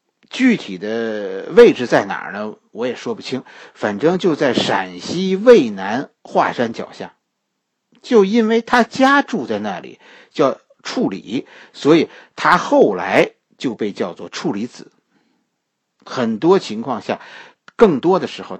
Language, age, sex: Chinese, 50-69, male